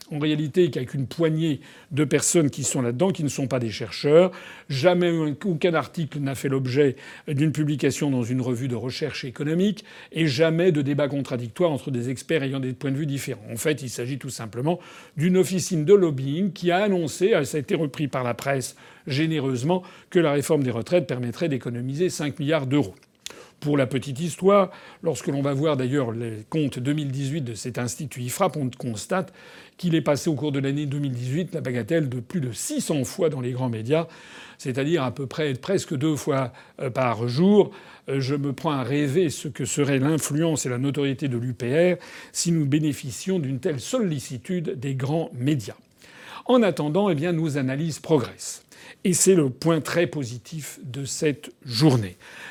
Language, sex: French, male